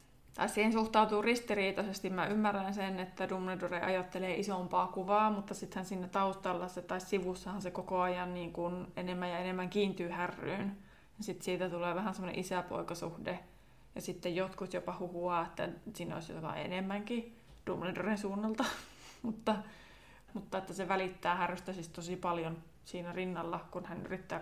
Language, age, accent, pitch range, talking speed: Finnish, 20-39, native, 175-200 Hz, 150 wpm